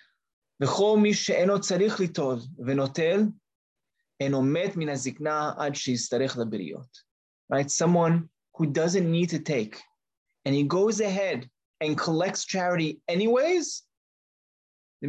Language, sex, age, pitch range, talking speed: English, male, 20-39, 130-170 Hz, 65 wpm